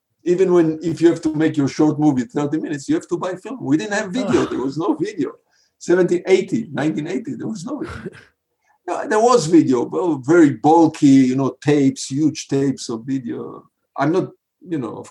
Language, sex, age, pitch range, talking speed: English, male, 50-69, 135-180 Hz, 195 wpm